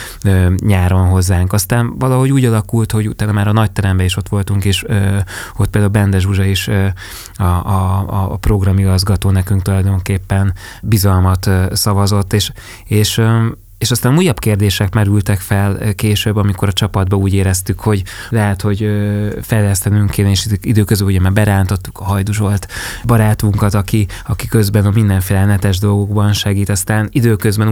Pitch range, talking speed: 95-105 Hz, 140 wpm